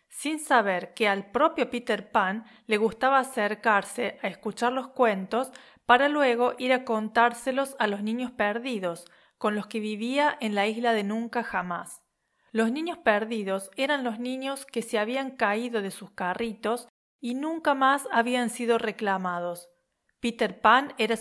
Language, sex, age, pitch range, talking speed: Spanish, female, 40-59, 200-245 Hz, 155 wpm